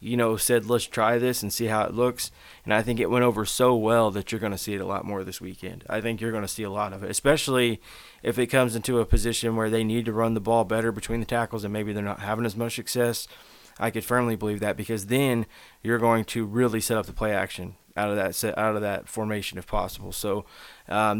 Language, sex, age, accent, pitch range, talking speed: English, male, 20-39, American, 105-120 Hz, 265 wpm